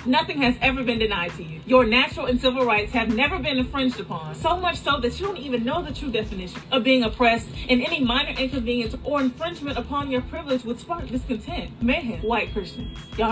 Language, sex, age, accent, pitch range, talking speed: English, female, 20-39, American, 215-255 Hz, 210 wpm